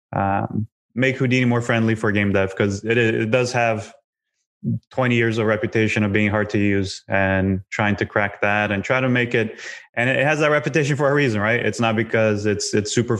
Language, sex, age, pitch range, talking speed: English, male, 20-39, 105-125 Hz, 215 wpm